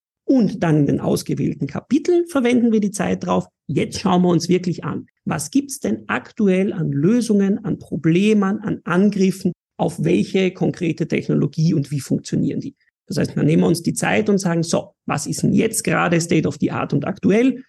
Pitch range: 165-210 Hz